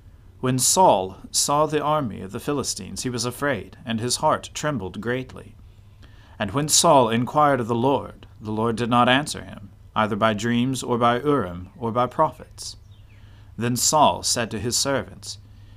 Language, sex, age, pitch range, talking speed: English, male, 40-59, 100-130 Hz, 165 wpm